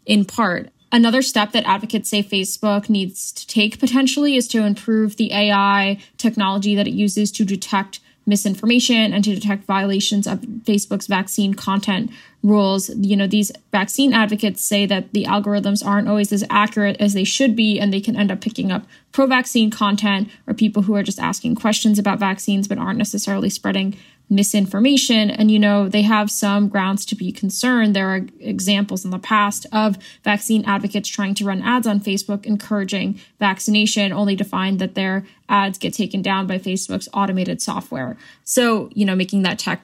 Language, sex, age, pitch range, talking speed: English, female, 10-29, 195-215 Hz, 180 wpm